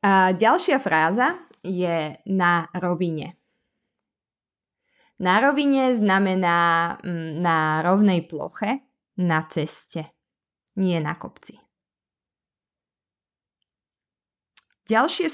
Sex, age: female, 20-39